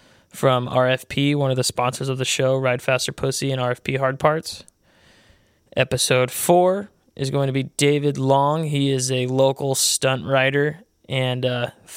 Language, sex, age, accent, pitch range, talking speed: English, male, 20-39, American, 130-140 Hz, 160 wpm